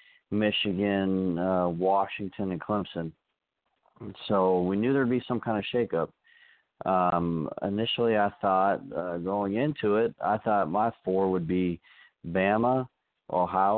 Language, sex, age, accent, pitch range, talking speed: English, male, 40-59, American, 95-115 Hz, 135 wpm